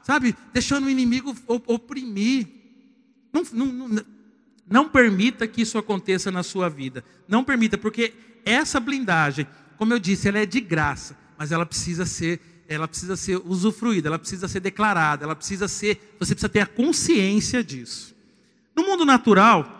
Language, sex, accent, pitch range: Portuguese, male, Brazilian, 185-250 Hz